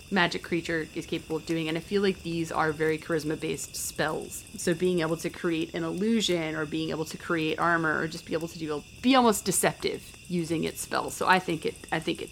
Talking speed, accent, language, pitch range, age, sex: 230 wpm, American, English, 165-190 Hz, 30-49, female